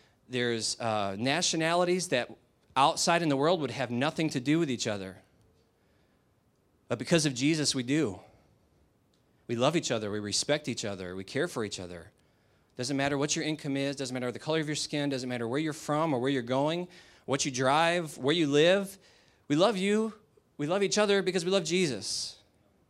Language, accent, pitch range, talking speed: English, American, 110-150 Hz, 195 wpm